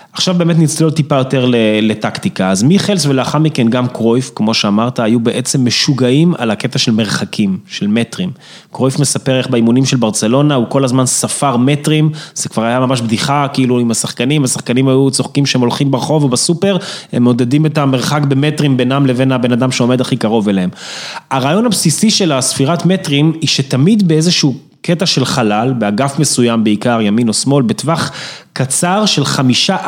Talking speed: 155 wpm